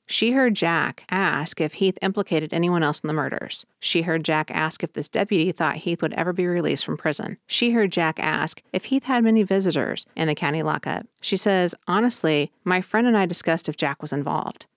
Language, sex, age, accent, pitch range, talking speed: English, female, 30-49, American, 150-175 Hz, 210 wpm